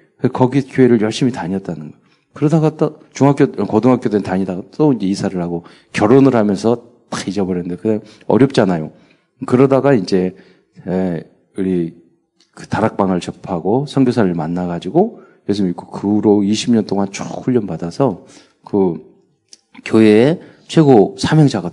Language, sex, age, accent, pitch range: Korean, male, 40-59, native, 90-125 Hz